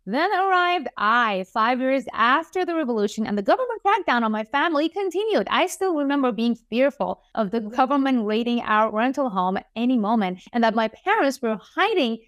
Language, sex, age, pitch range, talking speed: English, female, 20-39, 215-300 Hz, 180 wpm